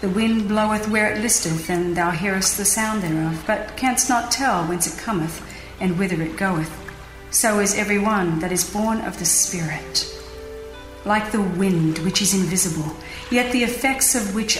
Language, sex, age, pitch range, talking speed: English, female, 40-59, 175-235 Hz, 180 wpm